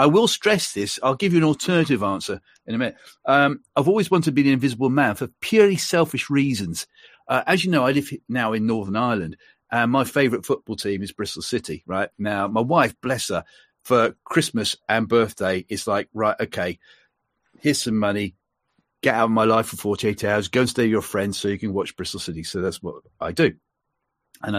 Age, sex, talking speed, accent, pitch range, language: 40-59, male, 210 wpm, British, 115-165 Hz, English